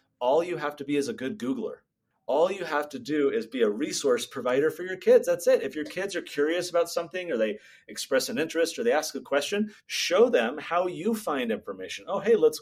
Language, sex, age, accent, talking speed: English, male, 30-49, American, 240 wpm